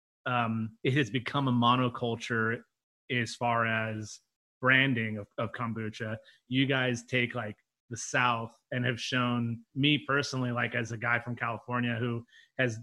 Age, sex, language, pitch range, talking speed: 30-49, male, English, 115-125 Hz, 150 wpm